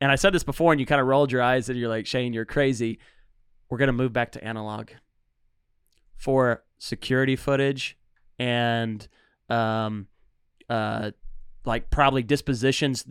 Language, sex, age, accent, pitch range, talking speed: English, male, 30-49, American, 115-140 Hz, 150 wpm